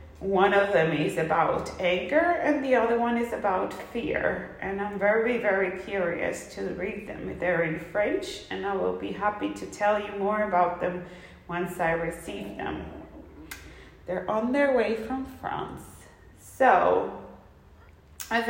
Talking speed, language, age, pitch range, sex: 150 wpm, English, 30-49, 180-240 Hz, female